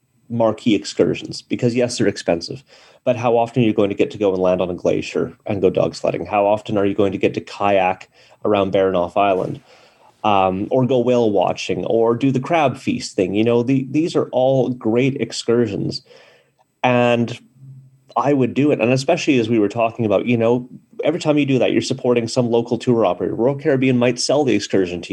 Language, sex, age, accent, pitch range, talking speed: English, male, 30-49, American, 105-130 Hz, 210 wpm